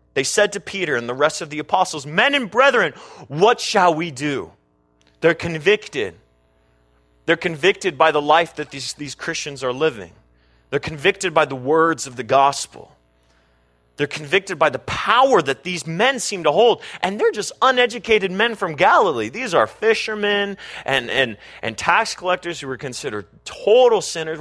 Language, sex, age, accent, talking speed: English, male, 30-49, American, 165 wpm